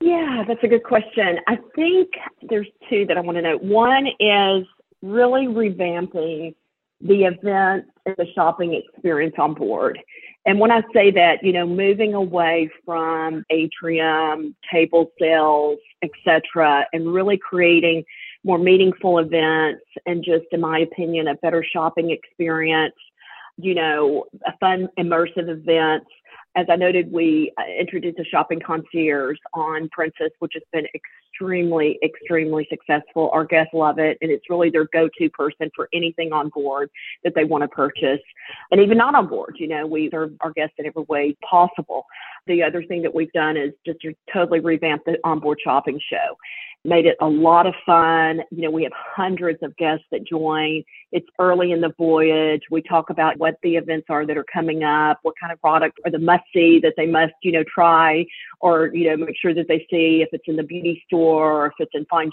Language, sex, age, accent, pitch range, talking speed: English, female, 40-59, American, 160-180 Hz, 180 wpm